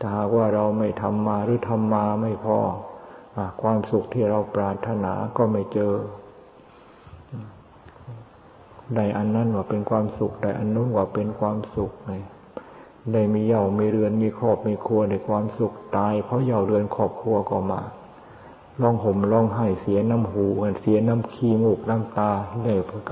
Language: Thai